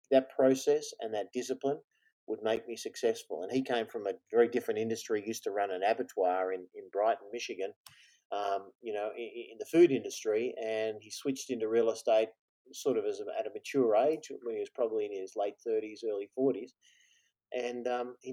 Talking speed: 195 wpm